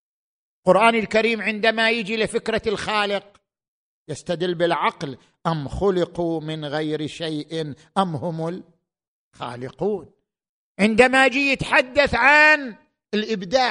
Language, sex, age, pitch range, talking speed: Arabic, male, 50-69, 195-250 Hz, 90 wpm